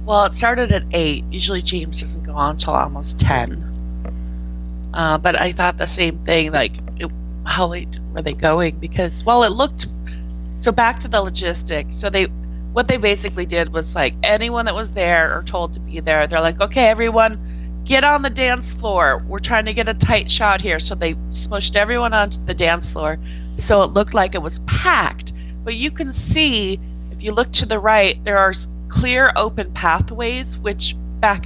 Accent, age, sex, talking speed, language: American, 30-49, female, 195 wpm, English